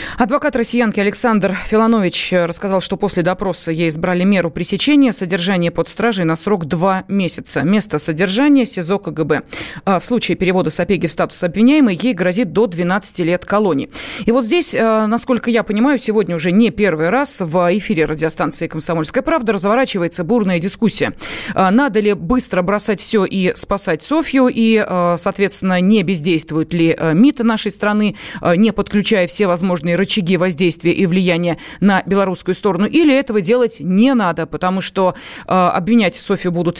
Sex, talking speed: female, 150 wpm